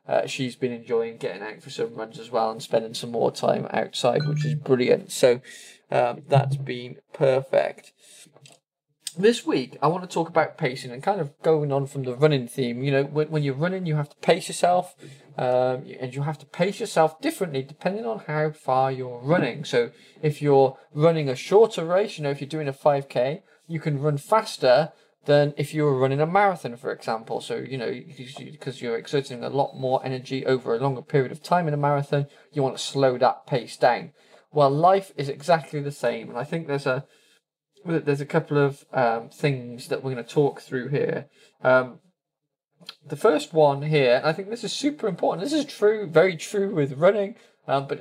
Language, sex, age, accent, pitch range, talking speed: English, male, 20-39, British, 135-165 Hz, 205 wpm